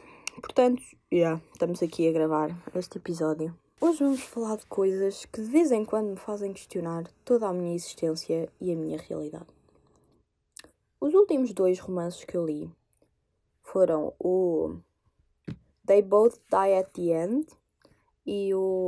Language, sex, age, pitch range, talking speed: Portuguese, female, 20-39, 180-270 Hz, 145 wpm